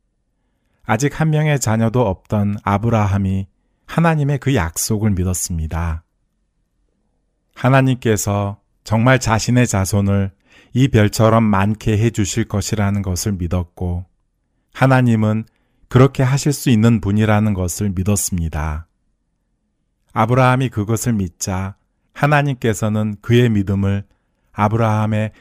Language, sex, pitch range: Korean, male, 95-120 Hz